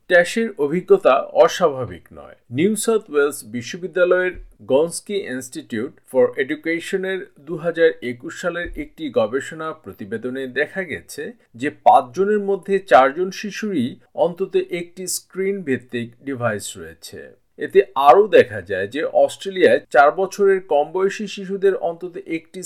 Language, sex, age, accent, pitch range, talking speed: Bengali, male, 50-69, native, 140-195 Hz, 100 wpm